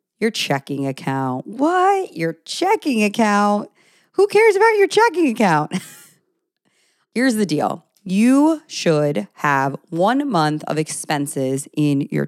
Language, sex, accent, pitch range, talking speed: English, female, American, 145-180 Hz, 120 wpm